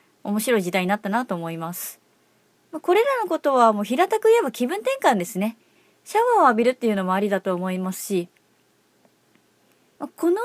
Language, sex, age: Japanese, female, 30-49